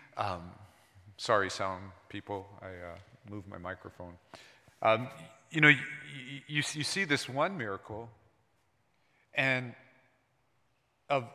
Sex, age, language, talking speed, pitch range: male, 40-59, English, 105 wpm, 115-150 Hz